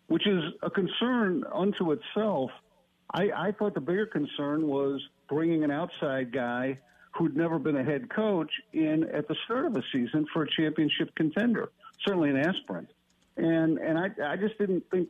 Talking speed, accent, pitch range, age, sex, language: 175 wpm, American, 135-185 Hz, 60-79, male, English